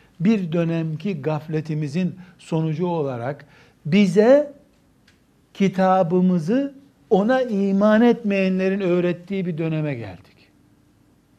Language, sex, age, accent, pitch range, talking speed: Turkish, male, 60-79, native, 160-200 Hz, 75 wpm